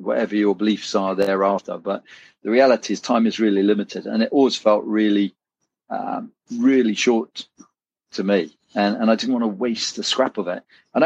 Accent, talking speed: British, 190 wpm